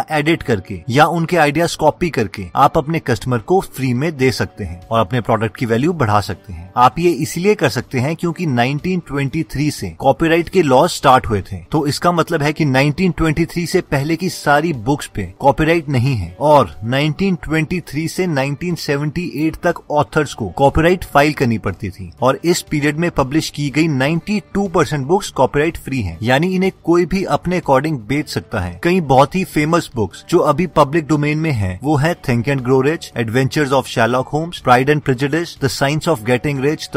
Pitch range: 125-160 Hz